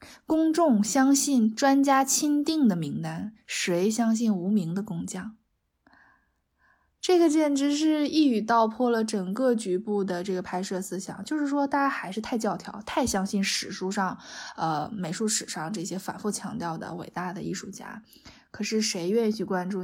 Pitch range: 185-240 Hz